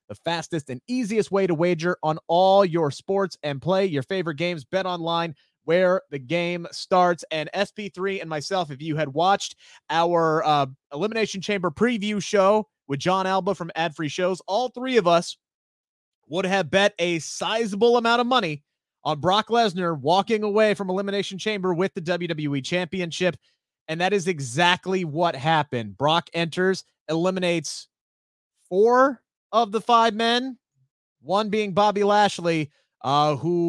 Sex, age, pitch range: male, 30-49, 140-190 Hz